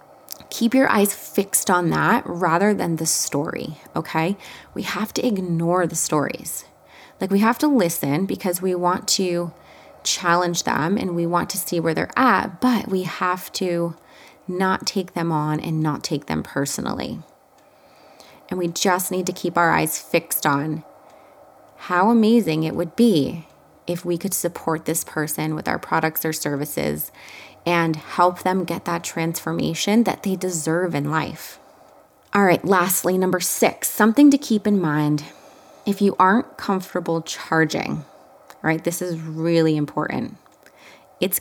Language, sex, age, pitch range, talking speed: English, female, 20-39, 160-190 Hz, 155 wpm